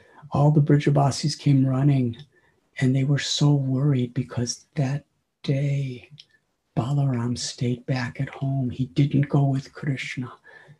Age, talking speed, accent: 60-79, 130 wpm, American